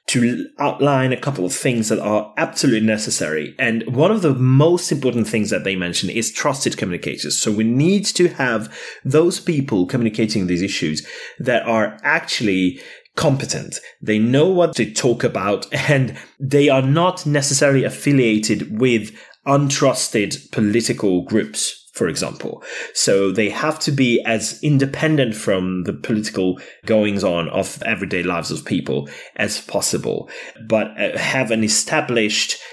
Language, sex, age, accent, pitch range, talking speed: English, male, 30-49, British, 100-135 Hz, 140 wpm